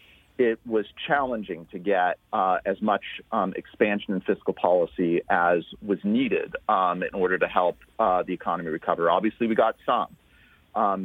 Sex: male